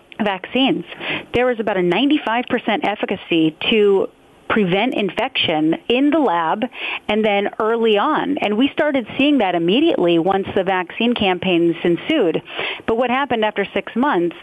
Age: 40-59